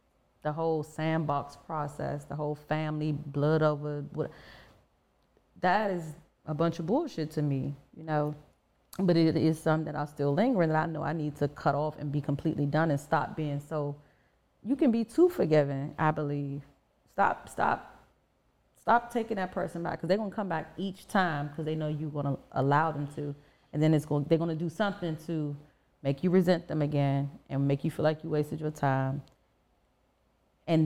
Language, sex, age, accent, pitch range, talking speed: English, female, 30-49, American, 145-165 Hz, 185 wpm